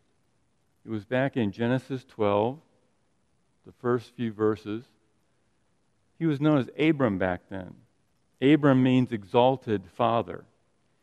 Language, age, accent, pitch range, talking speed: English, 50-69, American, 110-140 Hz, 115 wpm